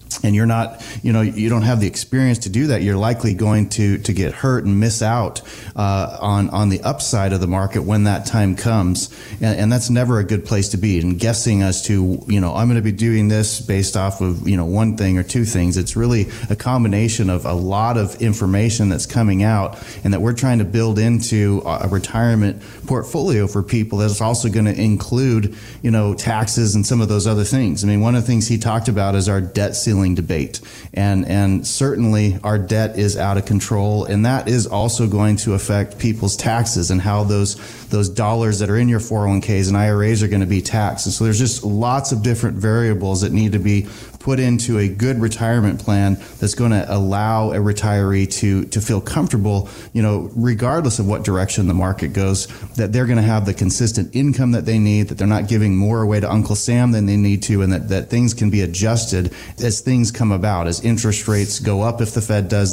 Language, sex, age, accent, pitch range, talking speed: English, male, 30-49, American, 100-115 Hz, 225 wpm